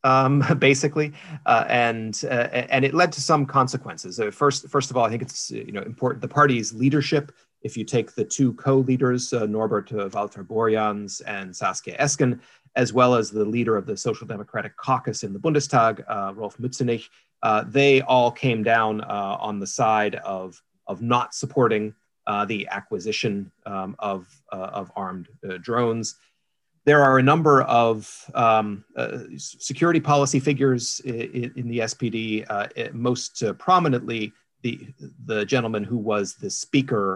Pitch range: 105-135 Hz